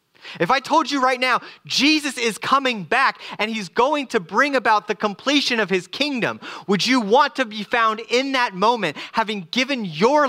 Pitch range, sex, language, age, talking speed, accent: 185-245 Hz, male, English, 30-49, 190 wpm, American